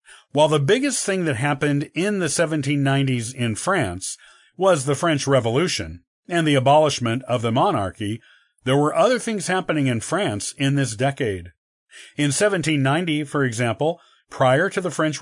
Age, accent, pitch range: 40-59, American, 125-165 Hz